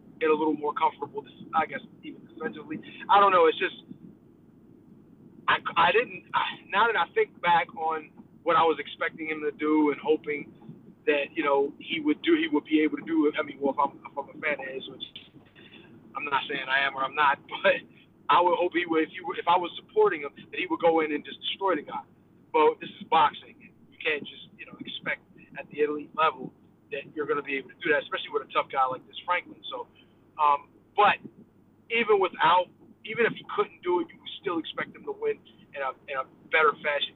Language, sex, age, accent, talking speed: English, male, 30-49, American, 225 wpm